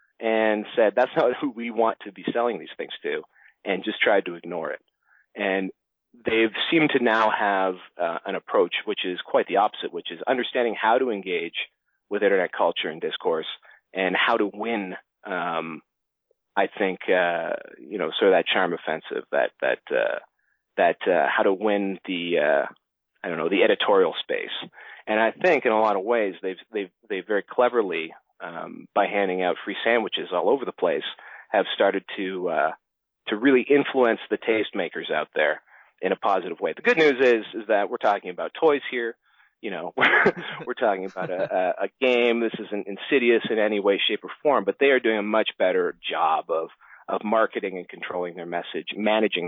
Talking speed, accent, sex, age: 195 wpm, American, male, 30-49